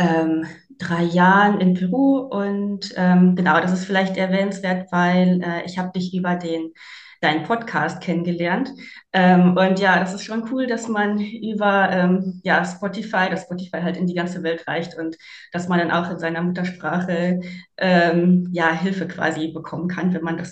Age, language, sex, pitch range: 20-39, German, female, 170-200 Hz